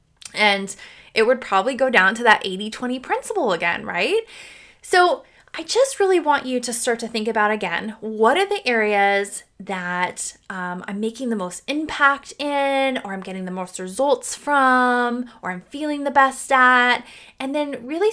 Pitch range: 200-275 Hz